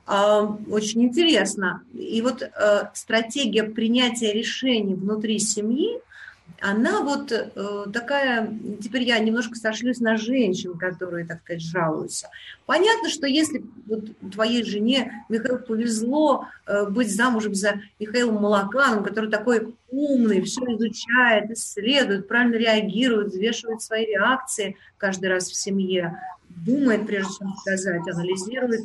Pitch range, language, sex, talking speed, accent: 195-245 Hz, Russian, female, 115 wpm, native